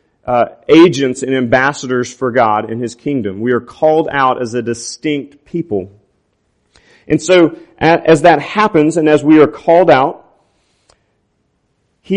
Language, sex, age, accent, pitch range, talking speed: English, male, 40-59, American, 135-165 Hz, 145 wpm